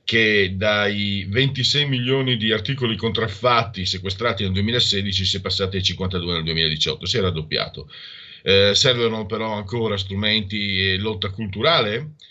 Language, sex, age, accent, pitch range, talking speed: Italian, male, 50-69, native, 95-115 Hz, 135 wpm